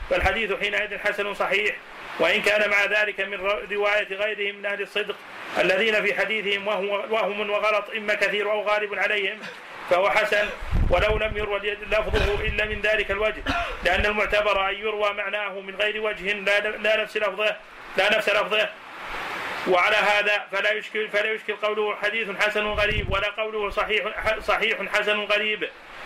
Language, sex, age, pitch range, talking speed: Arabic, male, 30-49, 205-215 Hz, 145 wpm